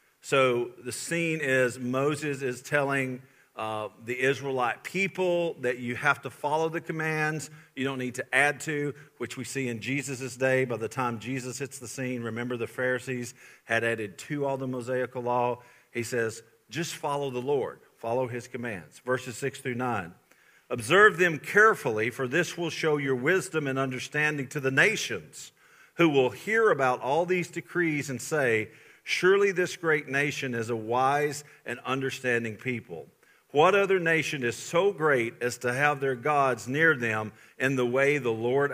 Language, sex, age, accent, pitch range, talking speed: English, male, 50-69, American, 120-145 Hz, 170 wpm